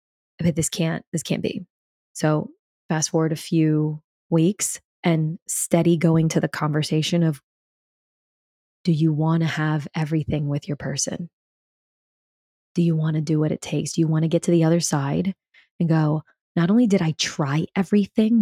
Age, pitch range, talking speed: 20-39, 160-205 Hz, 175 wpm